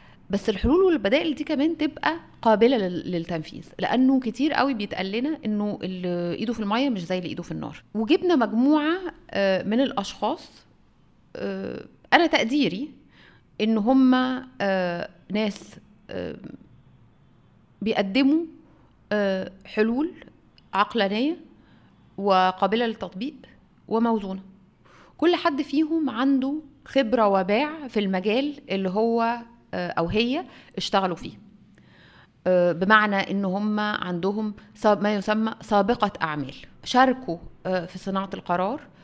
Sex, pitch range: female, 195-275 Hz